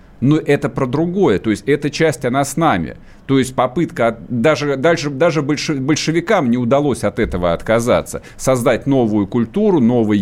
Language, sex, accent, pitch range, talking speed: Russian, male, native, 120-165 Hz, 155 wpm